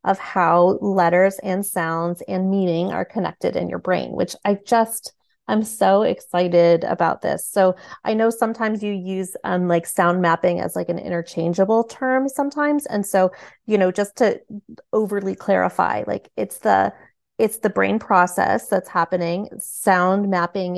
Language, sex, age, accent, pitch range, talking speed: English, female, 30-49, American, 180-215 Hz, 160 wpm